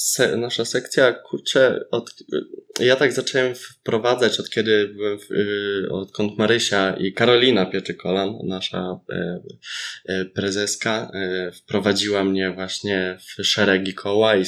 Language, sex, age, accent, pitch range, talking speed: Polish, male, 20-39, native, 100-115 Hz, 100 wpm